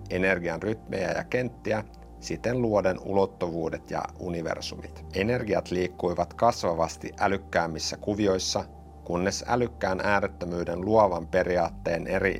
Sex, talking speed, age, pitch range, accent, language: male, 95 wpm, 50-69, 80-100 Hz, native, Finnish